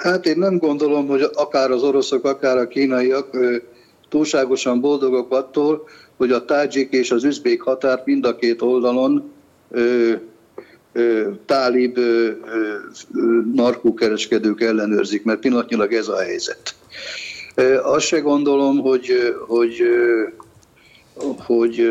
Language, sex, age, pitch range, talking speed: Hungarian, male, 50-69, 120-145 Hz, 105 wpm